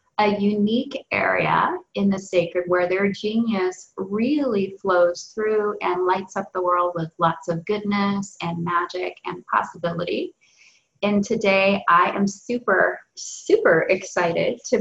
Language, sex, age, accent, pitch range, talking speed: English, female, 30-49, American, 180-220 Hz, 135 wpm